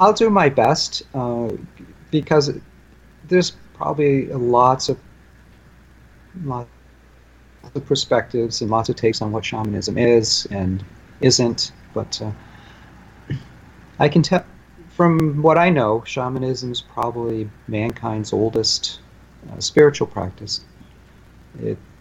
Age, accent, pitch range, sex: 40-59, American, 95-120 Hz, male